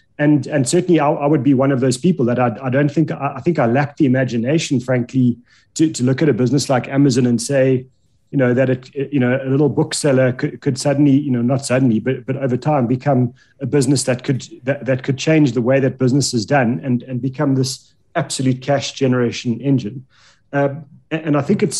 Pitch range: 125-145 Hz